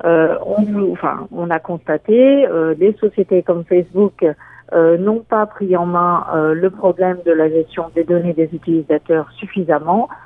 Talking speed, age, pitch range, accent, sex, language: 170 wpm, 50-69, 165-200 Hz, French, female, French